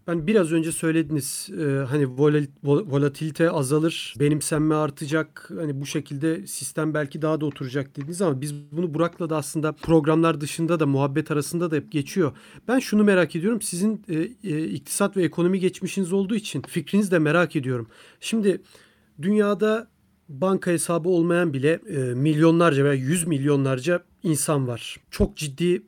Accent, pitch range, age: native, 150-175 Hz, 40-59